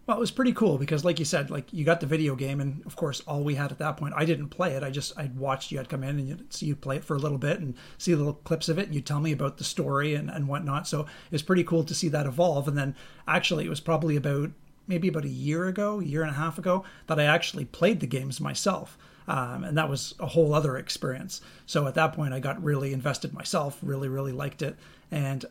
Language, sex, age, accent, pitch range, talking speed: English, male, 40-59, American, 140-165 Hz, 280 wpm